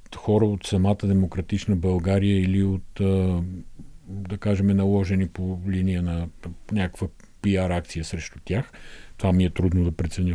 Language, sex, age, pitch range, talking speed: Bulgarian, male, 50-69, 90-115 Hz, 135 wpm